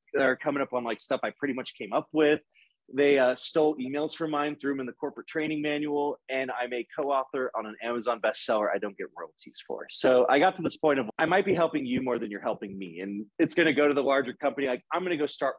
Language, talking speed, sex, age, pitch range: English, 270 wpm, male, 30-49, 130-165 Hz